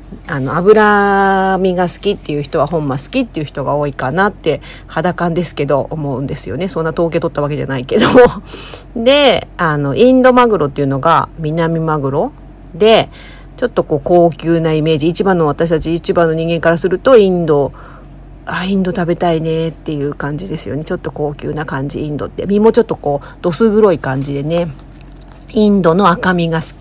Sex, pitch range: female, 145-185 Hz